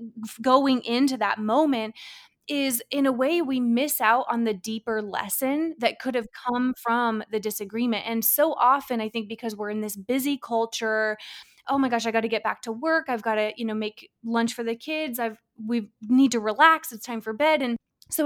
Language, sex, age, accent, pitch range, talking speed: English, female, 20-39, American, 215-275 Hz, 210 wpm